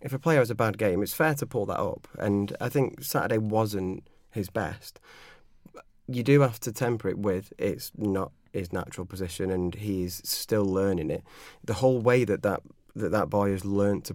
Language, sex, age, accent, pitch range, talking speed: English, male, 30-49, British, 95-110 Hz, 205 wpm